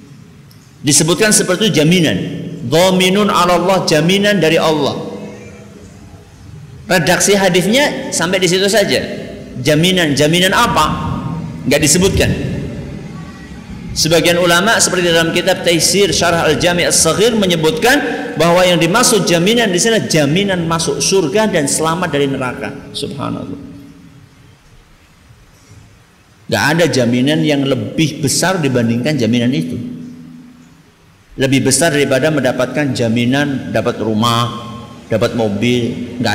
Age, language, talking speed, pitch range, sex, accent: 50-69, Indonesian, 105 wpm, 140-205 Hz, male, native